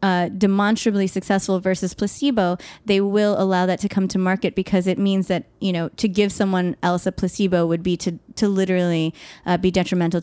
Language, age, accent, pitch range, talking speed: English, 20-39, American, 180-215 Hz, 195 wpm